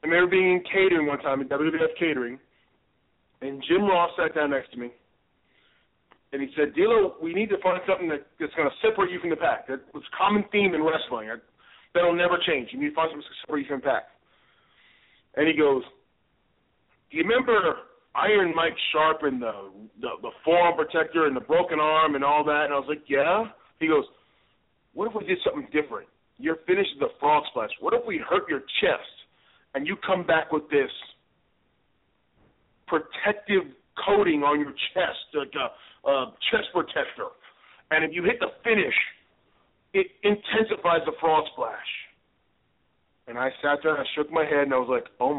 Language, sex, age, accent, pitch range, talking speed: English, male, 40-59, American, 140-185 Hz, 190 wpm